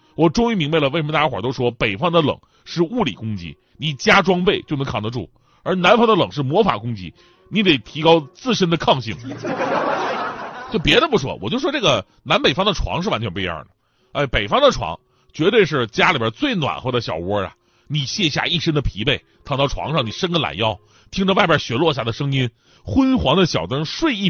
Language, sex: Chinese, male